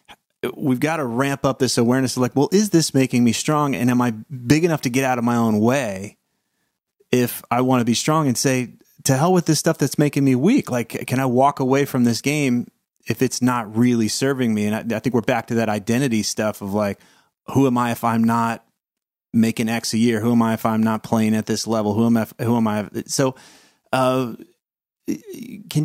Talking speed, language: 230 wpm, English